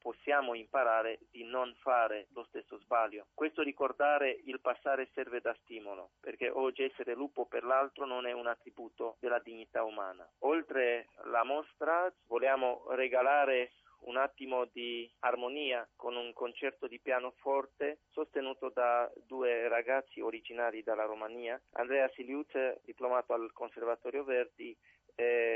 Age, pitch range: 40-59, 120-135 Hz